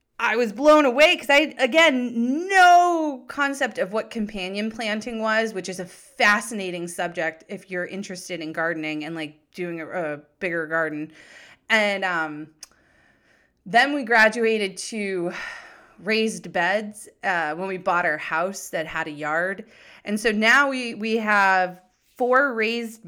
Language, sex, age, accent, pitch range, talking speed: English, female, 30-49, American, 175-230 Hz, 150 wpm